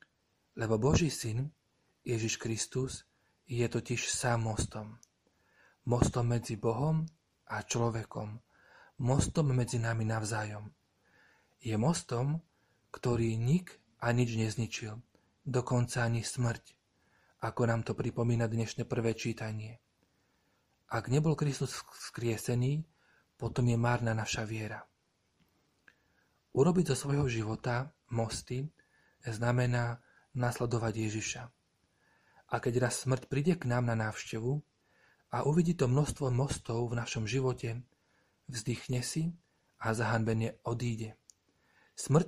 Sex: male